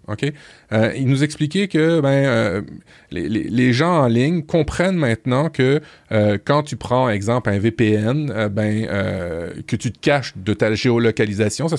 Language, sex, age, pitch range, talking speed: French, male, 30-49, 110-145 Hz, 180 wpm